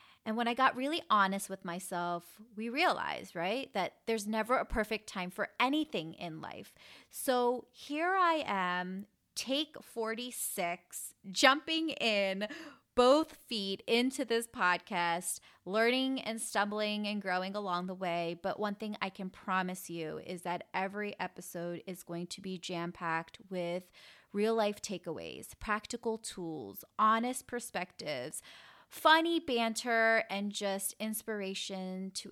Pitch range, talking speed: 180-230 Hz, 130 wpm